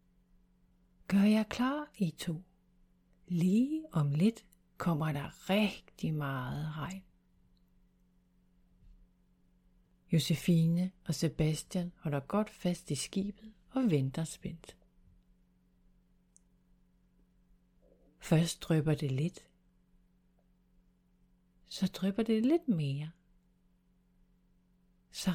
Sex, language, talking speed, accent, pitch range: female, Danish, 80 wpm, native, 155-180 Hz